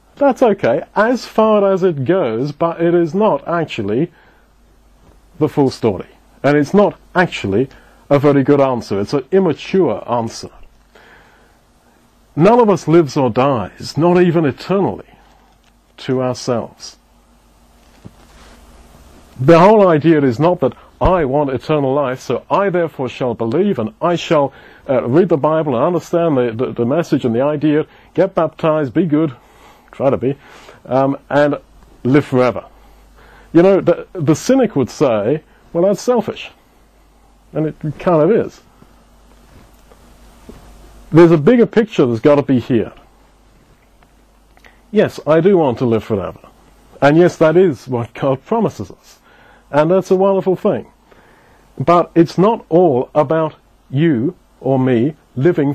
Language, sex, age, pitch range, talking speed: English, male, 40-59, 125-175 Hz, 145 wpm